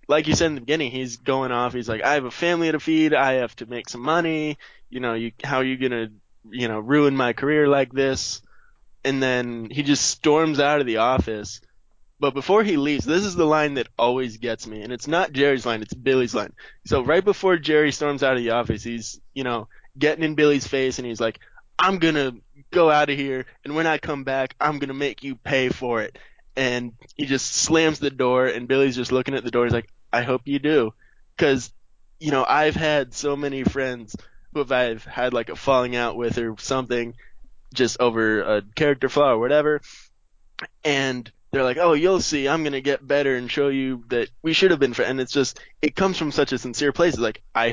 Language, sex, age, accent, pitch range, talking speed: English, male, 20-39, American, 120-150 Hz, 230 wpm